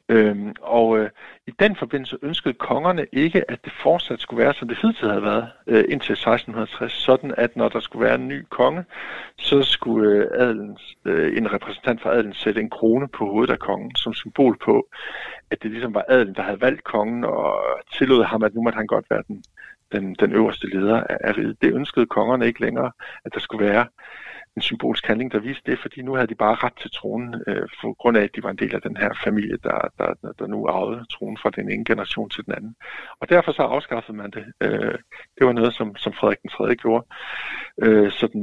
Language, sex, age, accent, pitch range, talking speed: Danish, male, 60-79, native, 110-140 Hz, 215 wpm